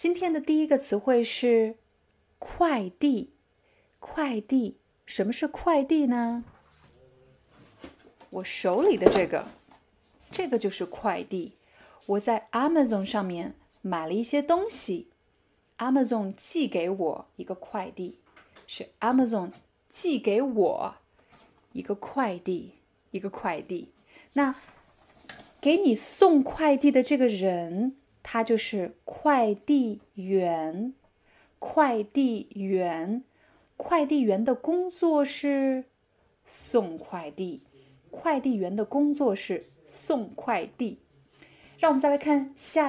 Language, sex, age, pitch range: Chinese, female, 30-49, 205-290 Hz